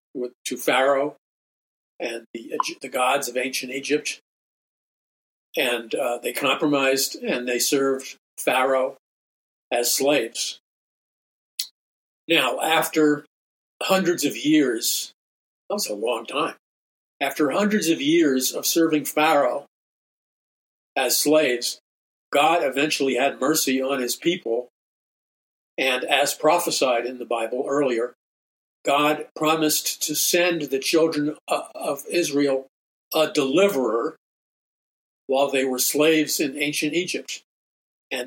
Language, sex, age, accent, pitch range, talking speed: English, male, 50-69, American, 130-160 Hz, 110 wpm